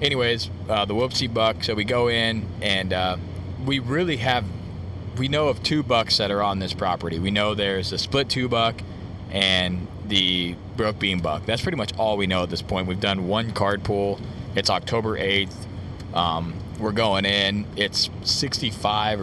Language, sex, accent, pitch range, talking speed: English, male, American, 95-110 Hz, 185 wpm